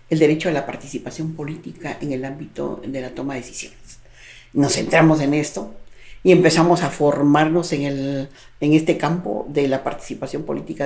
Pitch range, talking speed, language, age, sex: 140-170 Hz, 170 wpm, Spanish, 50-69, female